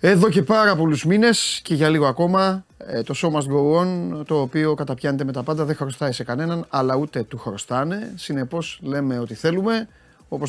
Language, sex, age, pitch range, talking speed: Greek, male, 30-49, 125-165 Hz, 185 wpm